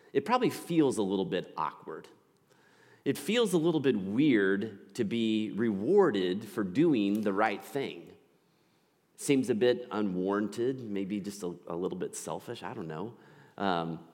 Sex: male